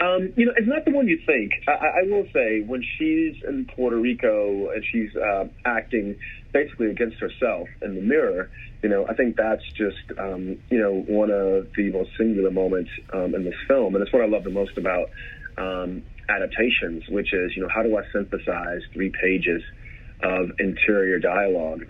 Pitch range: 90-115 Hz